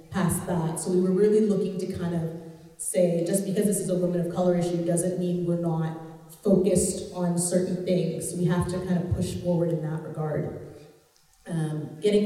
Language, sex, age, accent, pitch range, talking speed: English, female, 30-49, American, 155-180 Hz, 195 wpm